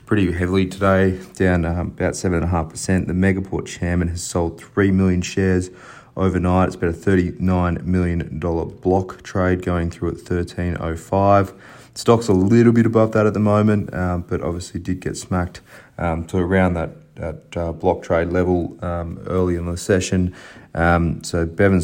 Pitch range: 85-95 Hz